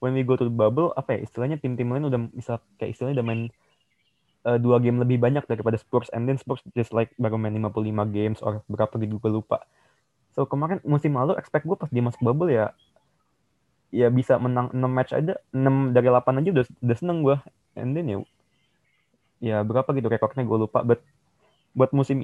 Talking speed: 200 wpm